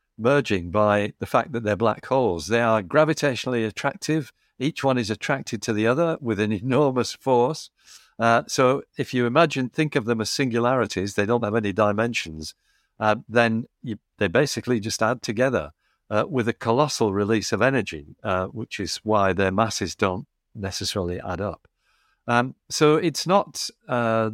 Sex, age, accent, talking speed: male, 50-69, British, 165 wpm